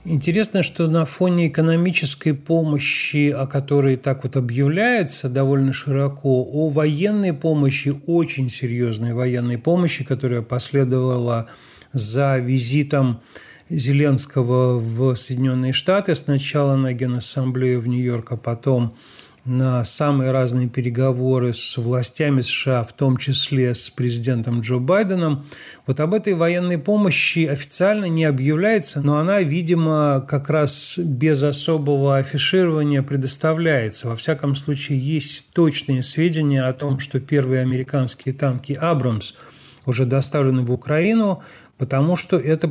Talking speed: 120 wpm